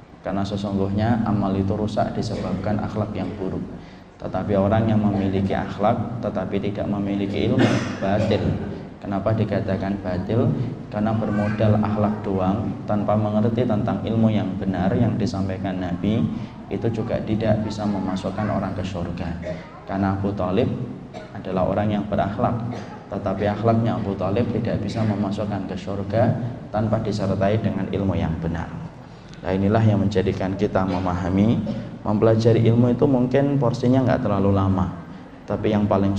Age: 20-39